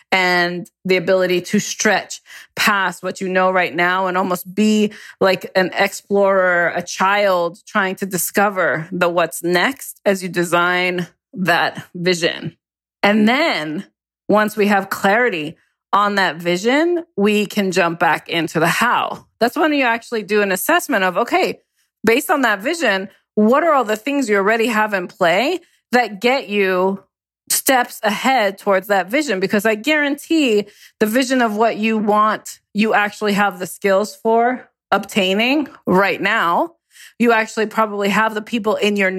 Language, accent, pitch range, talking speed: English, American, 185-230 Hz, 160 wpm